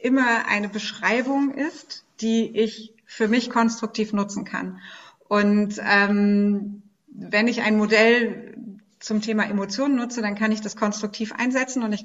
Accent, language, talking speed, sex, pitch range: German, German, 145 wpm, female, 195-225 Hz